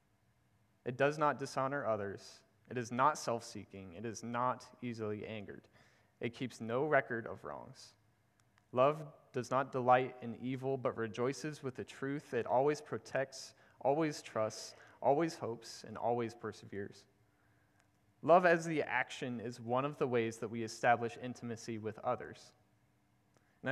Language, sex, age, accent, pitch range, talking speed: English, male, 30-49, American, 115-145 Hz, 145 wpm